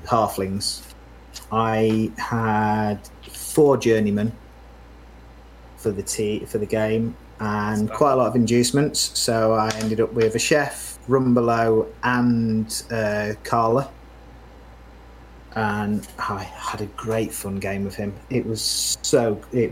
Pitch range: 90-120 Hz